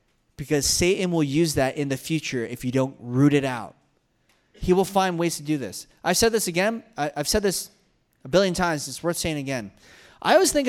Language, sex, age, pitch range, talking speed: English, male, 20-39, 145-205 Hz, 215 wpm